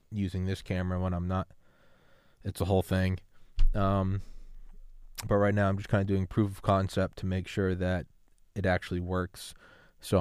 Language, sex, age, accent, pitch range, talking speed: English, male, 20-39, American, 85-100 Hz, 175 wpm